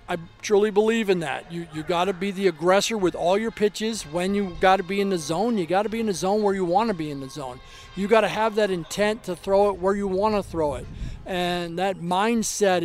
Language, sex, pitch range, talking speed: English, male, 175-210 Hz, 265 wpm